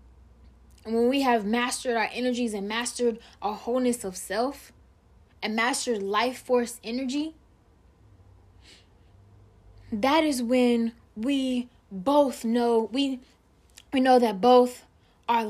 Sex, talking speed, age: female, 115 wpm, 10-29